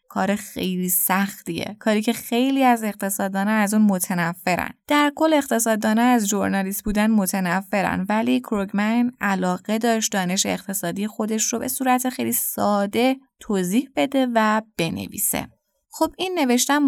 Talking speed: 130 wpm